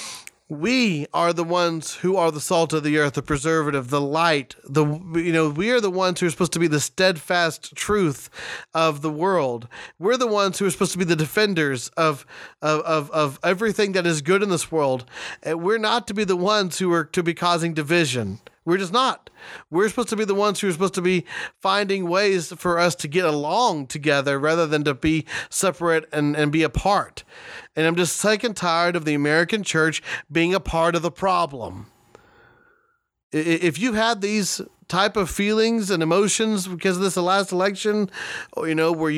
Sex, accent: male, American